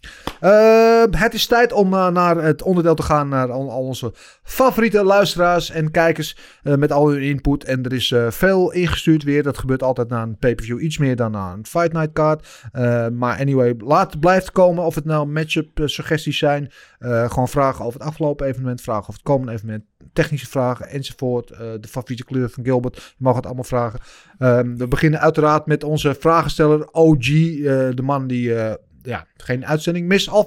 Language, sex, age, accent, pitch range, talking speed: Dutch, male, 30-49, Dutch, 125-165 Hz, 200 wpm